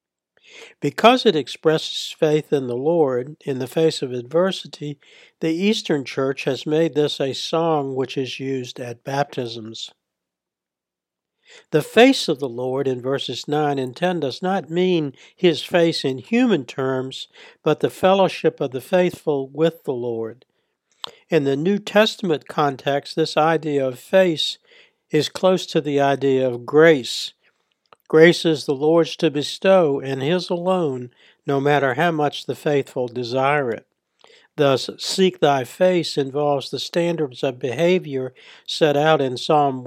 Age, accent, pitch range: 60-79, American, 130-165 Hz